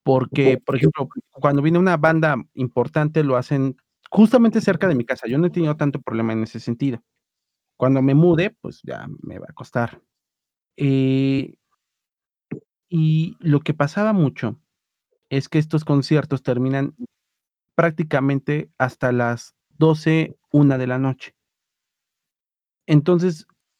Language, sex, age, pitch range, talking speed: Spanish, male, 40-59, 130-165 Hz, 135 wpm